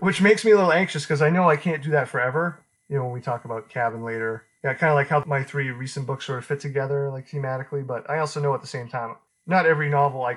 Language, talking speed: English, 285 wpm